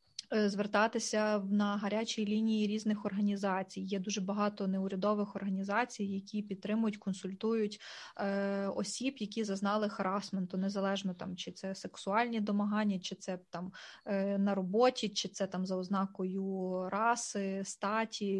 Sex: female